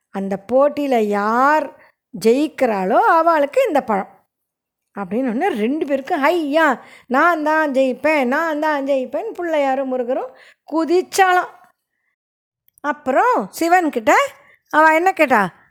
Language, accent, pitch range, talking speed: Tamil, native, 240-335 Hz, 105 wpm